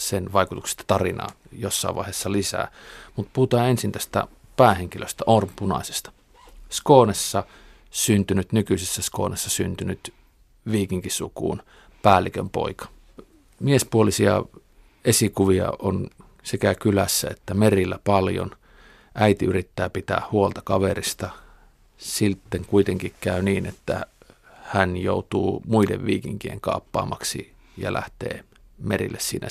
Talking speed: 95 wpm